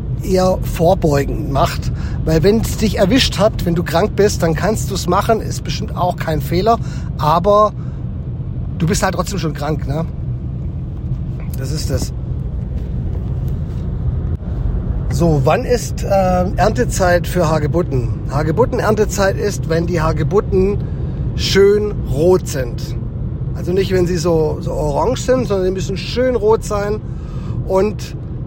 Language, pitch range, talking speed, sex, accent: German, 145-180 Hz, 135 wpm, male, German